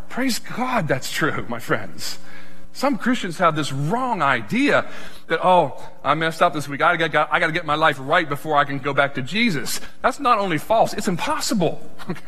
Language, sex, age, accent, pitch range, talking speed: English, male, 40-59, American, 125-190 Hz, 200 wpm